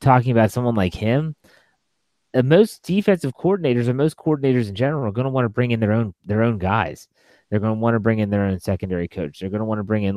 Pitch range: 100-125 Hz